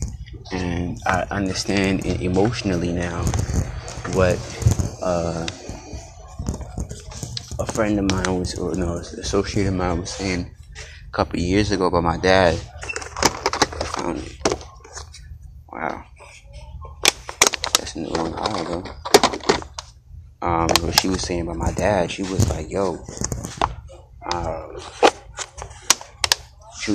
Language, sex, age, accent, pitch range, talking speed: English, male, 20-39, American, 85-100 Hz, 110 wpm